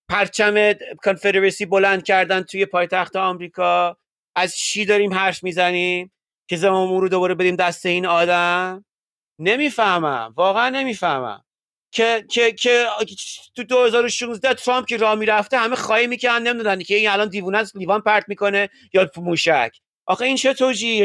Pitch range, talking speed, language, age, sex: 180-230 Hz, 135 wpm, Persian, 30-49, male